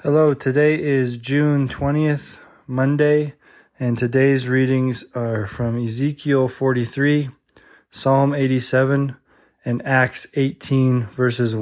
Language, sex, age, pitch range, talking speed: English, male, 20-39, 120-135 Hz, 100 wpm